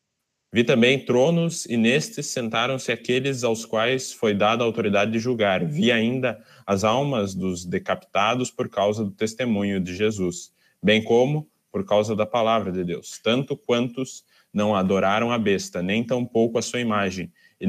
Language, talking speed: Portuguese, 165 wpm